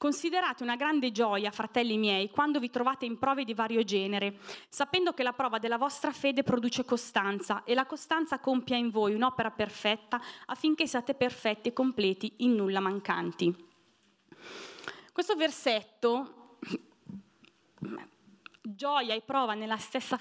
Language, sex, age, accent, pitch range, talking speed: Italian, female, 20-39, native, 205-280 Hz, 135 wpm